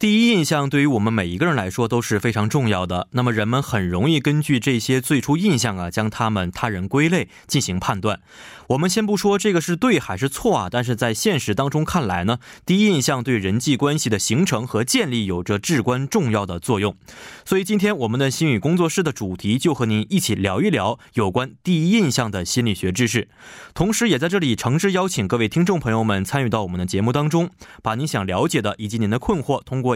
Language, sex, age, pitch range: Korean, male, 20-39, 105-150 Hz